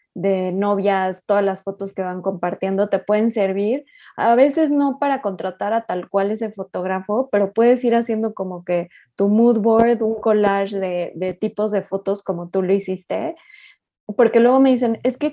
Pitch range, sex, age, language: 195-230 Hz, female, 20-39, Spanish